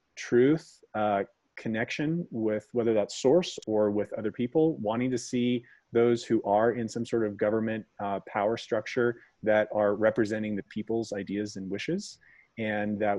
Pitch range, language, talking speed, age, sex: 105-125 Hz, English, 160 wpm, 30-49, male